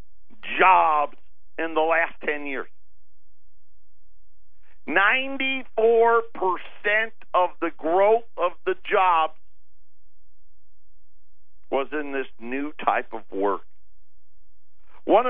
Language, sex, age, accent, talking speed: English, male, 50-69, American, 80 wpm